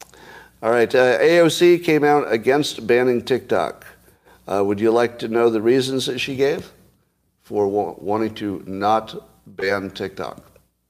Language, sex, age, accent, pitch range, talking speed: English, male, 50-69, American, 100-125 Hz, 145 wpm